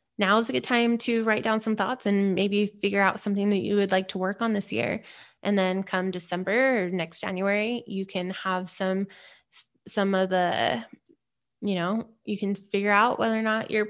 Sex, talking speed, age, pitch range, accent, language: female, 205 wpm, 20-39, 190-215 Hz, American, English